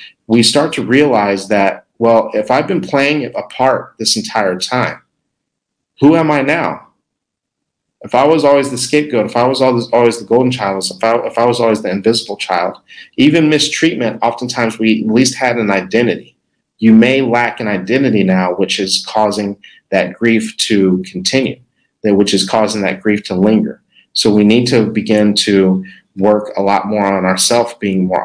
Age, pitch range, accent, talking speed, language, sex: 40-59, 100-125 Hz, American, 180 wpm, English, male